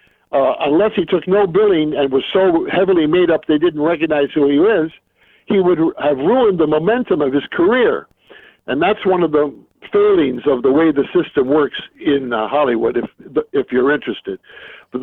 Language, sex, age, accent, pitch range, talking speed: English, male, 60-79, American, 140-200 Hz, 190 wpm